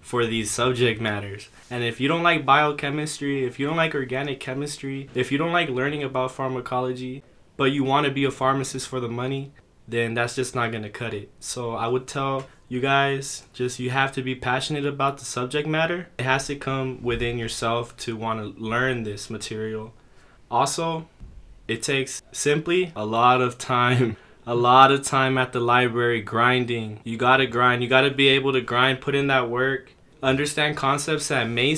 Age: 20-39